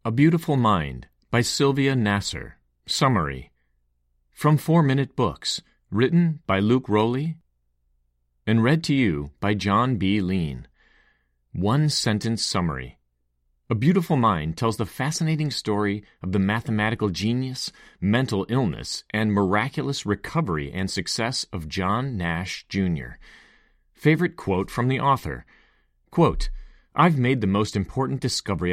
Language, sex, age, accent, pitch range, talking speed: English, male, 40-59, American, 90-130 Hz, 125 wpm